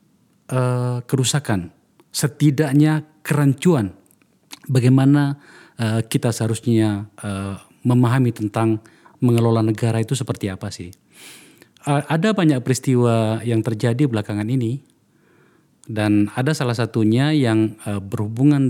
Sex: male